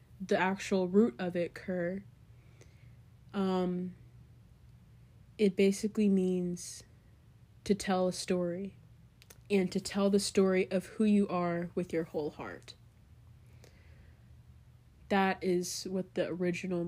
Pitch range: 120-190 Hz